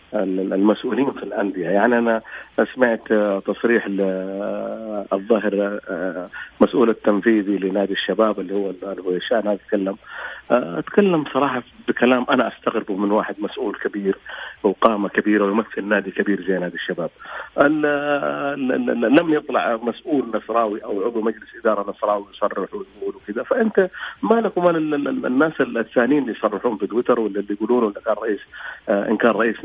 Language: Arabic